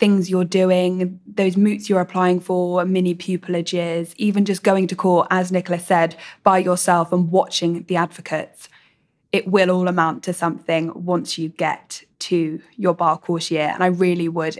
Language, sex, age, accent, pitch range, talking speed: English, female, 10-29, British, 170-190 Hz, 175 wpm